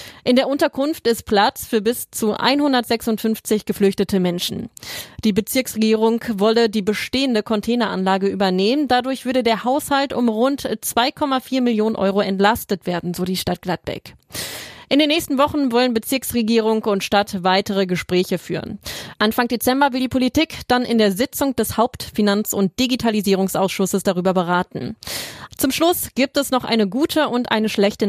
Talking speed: 145 wpm